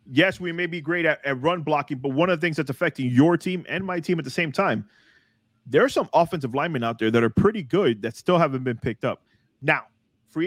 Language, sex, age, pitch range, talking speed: English, male, 30-49, 125-160 Hz, 250 wpm